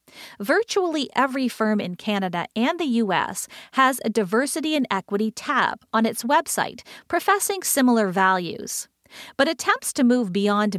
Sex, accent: female, American